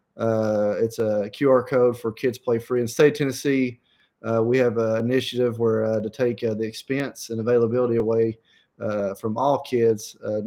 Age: 30-49